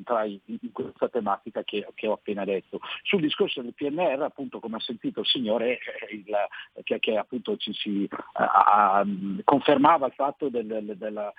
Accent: native